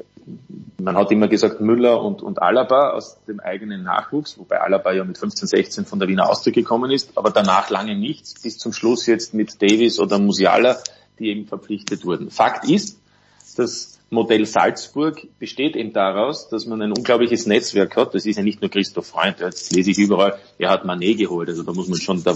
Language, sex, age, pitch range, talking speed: English, male, 30-49, 95-115 Hz, 200 wpm